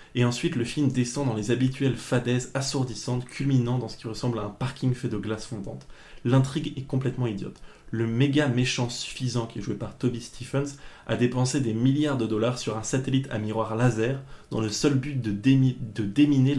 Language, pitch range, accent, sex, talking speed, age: French, 110-135 Hz, French, male, 200 wpm, 20-39